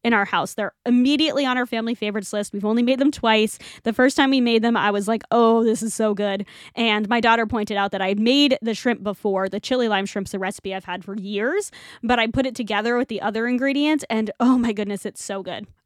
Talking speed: 255 wpm